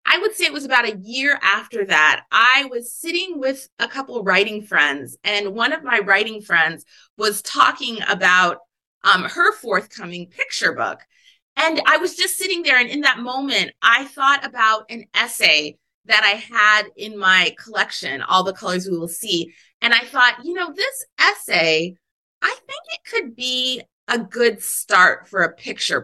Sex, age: female, 30-49